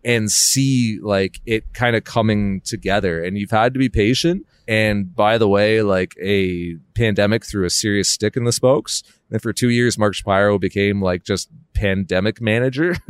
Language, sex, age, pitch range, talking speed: English, male, 30-49, 100-145 Hz, 180 wpm